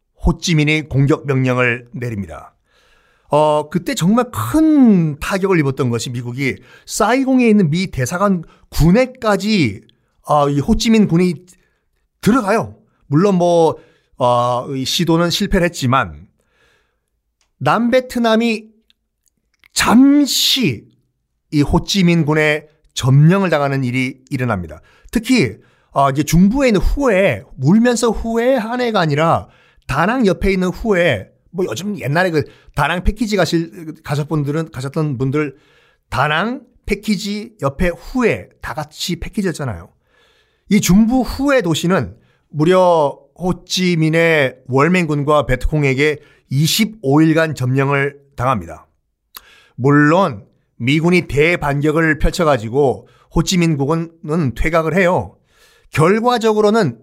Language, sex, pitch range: Korean, male, 140-200 Hz